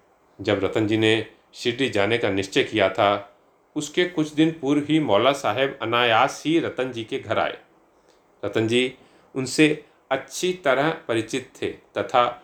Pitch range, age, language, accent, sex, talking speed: 110-145 Hz, 40-59, Hindi, native, male, 155 wpm